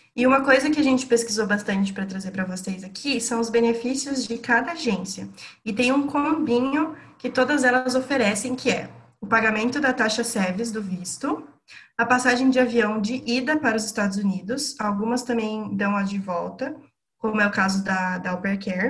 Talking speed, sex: 185 wpm, female